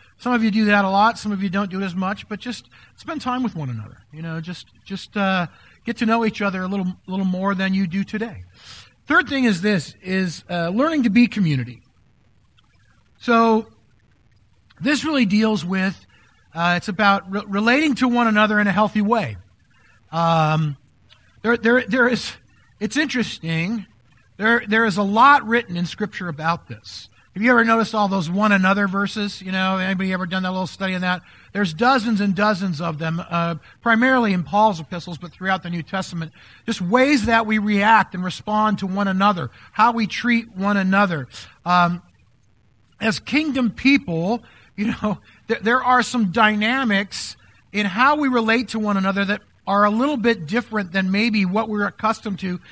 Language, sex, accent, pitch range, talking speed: English, male, American, 170-225 Hz, 185 wpm